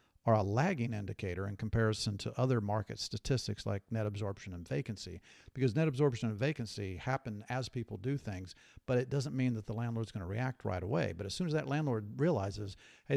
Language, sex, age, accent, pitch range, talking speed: English, male, 50-69, American, 110-130 Hz, 200 wpm